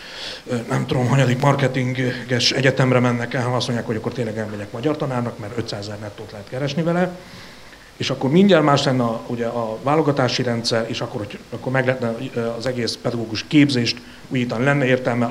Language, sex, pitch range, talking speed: Hungarian, male, 115-135 Hz, 180 wpm